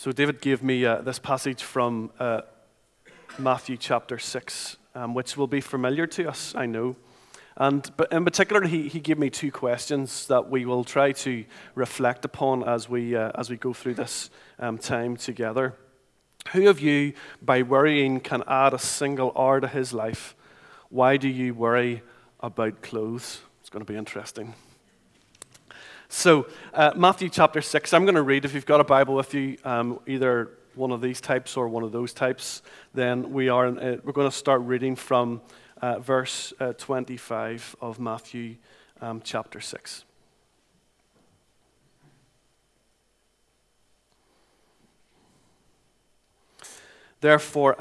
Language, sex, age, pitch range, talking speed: English, male, 40-59, 120-140 Hz, 150 wpm